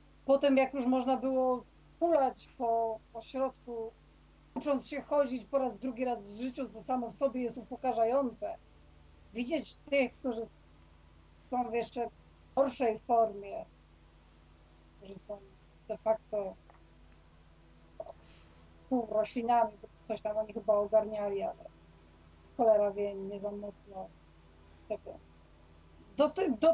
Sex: female